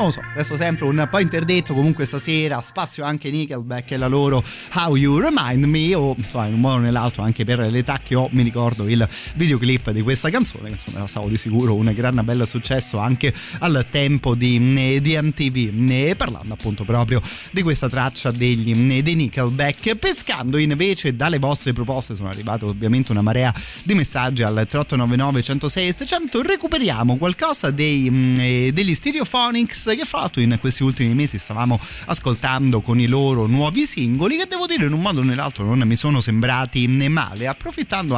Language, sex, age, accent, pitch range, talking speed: Italian, male, 30-49, native, 120-150 Hz, 170 wpm